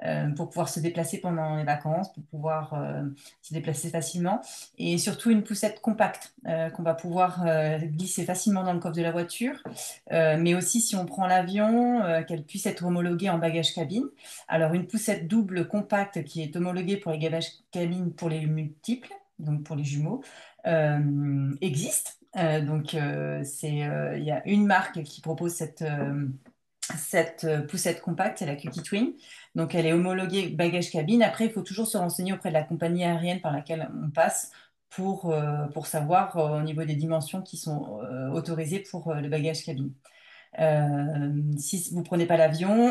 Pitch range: 155-185 Hz